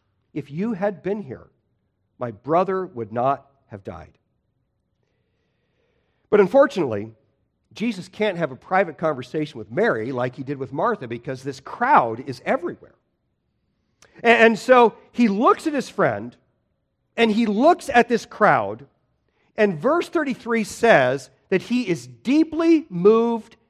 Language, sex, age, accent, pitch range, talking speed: English, male, 50-69, American, 135-225 Hz, 135 wpm